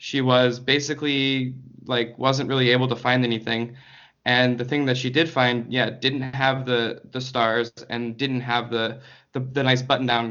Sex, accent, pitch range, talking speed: male, American, 115-135 Hz, 180 wpm